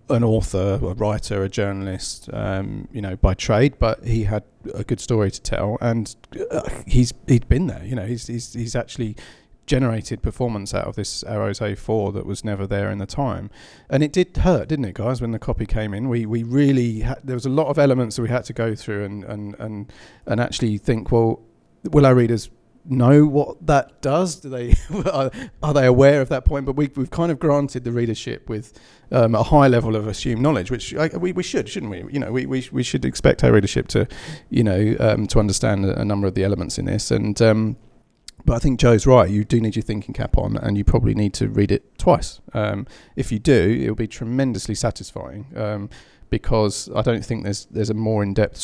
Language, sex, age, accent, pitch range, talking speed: English, male, 40-59, British, 105-130 Hz, 220 wpm